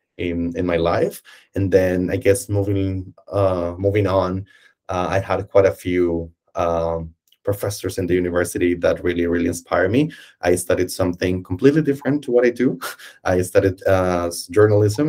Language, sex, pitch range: English, male, 85-95 Hz